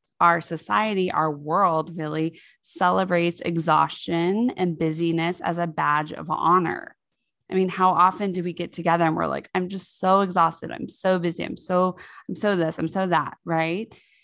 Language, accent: English, American